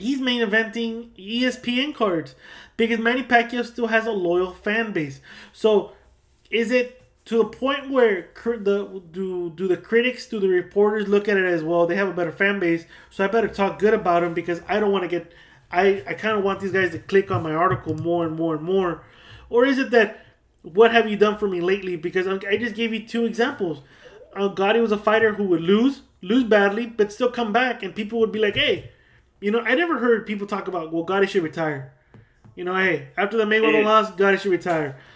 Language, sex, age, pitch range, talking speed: English, male, 20-39, 190-245 Hz, 225 wpm